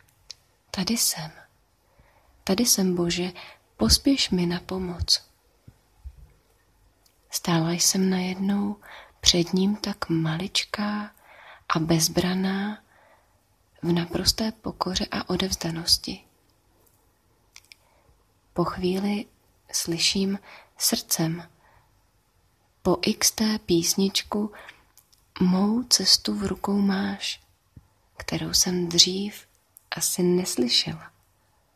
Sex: female